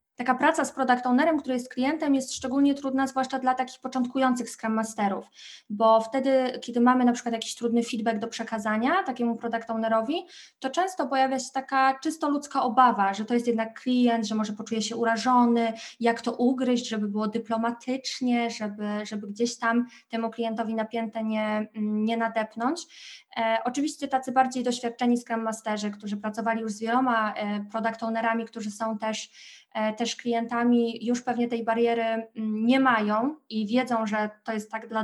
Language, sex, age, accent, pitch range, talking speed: Polish, female, 20-39, native, 220-260 Hz, 165 wpm